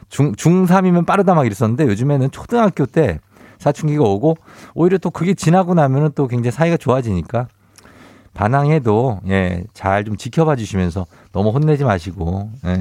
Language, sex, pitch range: Korean, male, 110-160 Hz